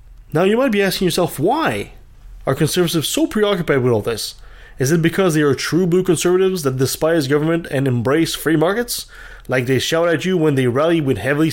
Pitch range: 130-190 Hz